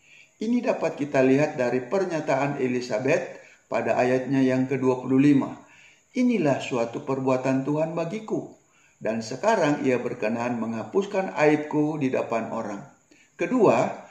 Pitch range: 130-180 Hz